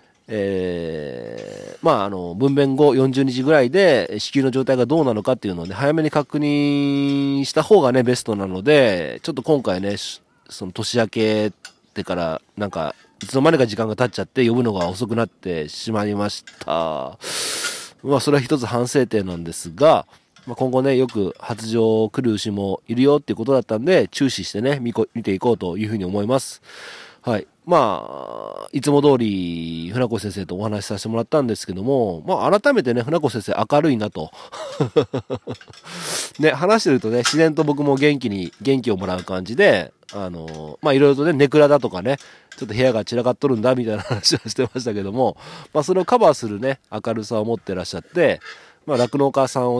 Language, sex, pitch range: Japanese, male, 105-140 Hz